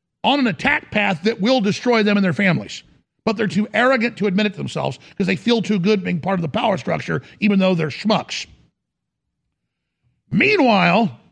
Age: 50-69